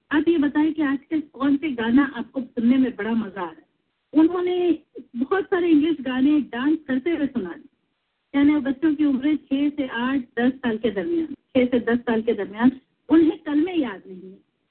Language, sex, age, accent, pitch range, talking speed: English, female, 50-69, Indian, 245-300 Hz, 100 wpm